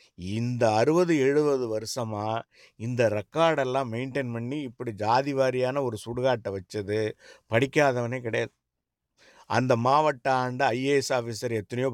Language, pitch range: English, 115-140 Hz